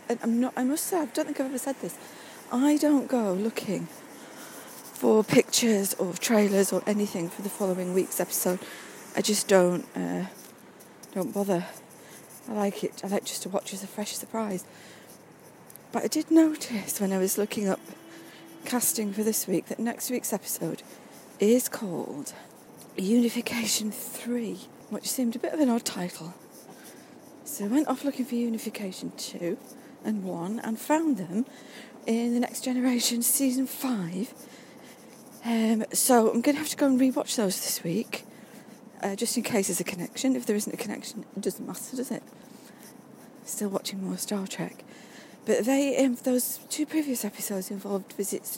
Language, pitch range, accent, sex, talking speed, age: English, 200-255 Hz, British, female, 165 wpm, 40-59